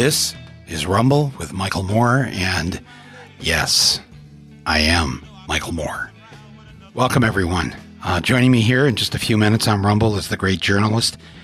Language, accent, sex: English, American, male